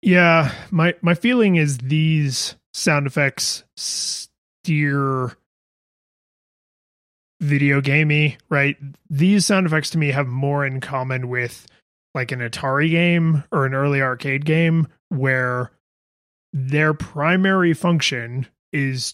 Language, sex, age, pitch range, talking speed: English, male, 30-49, 140-175 Hz, 115 wpm